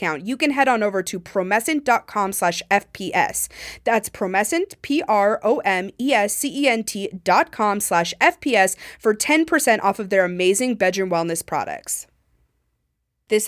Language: English